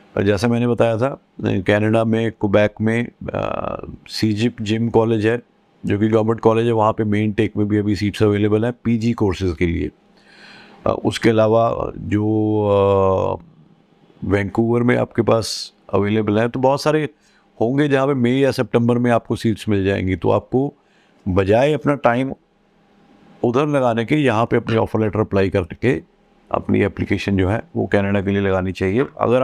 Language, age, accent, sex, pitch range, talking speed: Hindi, 50-69, native, male, 105-130 Hz, 165 wpm